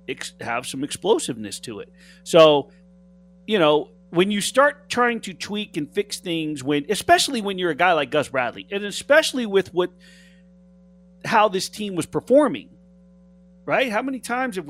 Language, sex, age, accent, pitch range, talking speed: English, male, 40-59, American, 165-200 Hz, 165 wpm